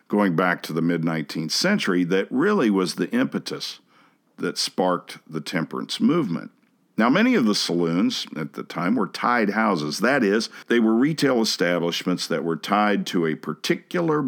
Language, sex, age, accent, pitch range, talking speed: English, male, 50-69, American, 85-115 Hz, 165 wpm